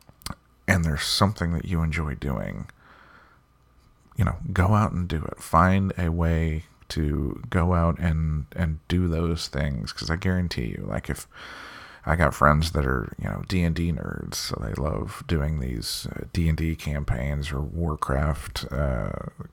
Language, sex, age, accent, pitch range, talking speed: English, male, 40-59, American, 75-90 Hz, 155 wpm